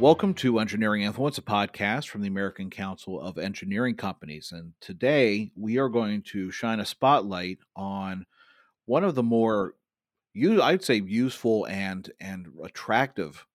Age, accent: 40-59, American